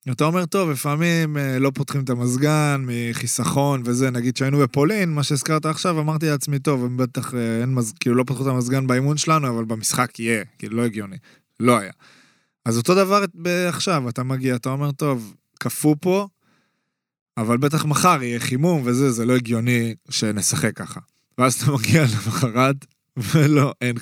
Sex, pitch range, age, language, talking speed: male, 120-145 Hz, 20-39, Hebrew, 155 wpm